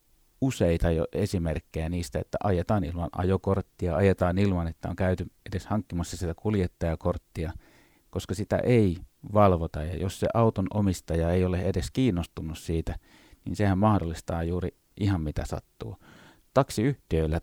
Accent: native